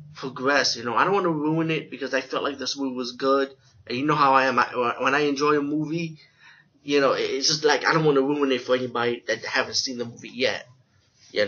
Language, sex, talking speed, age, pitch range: English, male, 250 wpm, 20-39, 120-145 Hz